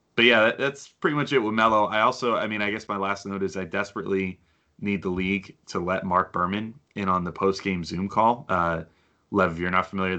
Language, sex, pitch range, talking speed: English, male, 90-105 Hz, 230 wpm